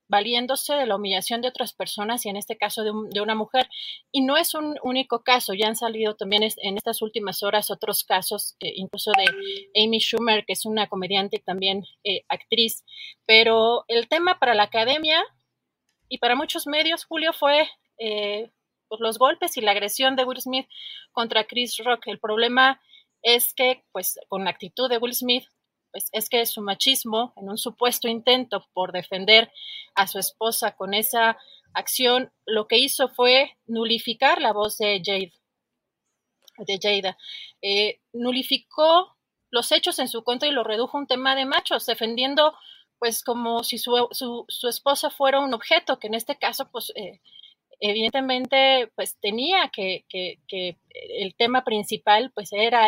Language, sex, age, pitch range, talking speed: Spanish, female, 30-49, 210-265 Hz, 170 wpm